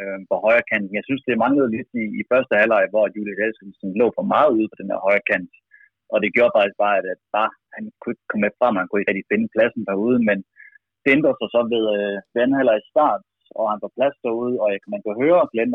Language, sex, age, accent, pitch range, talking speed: Danish, male, 30-49, native, 105-175 Hz, 235 wpm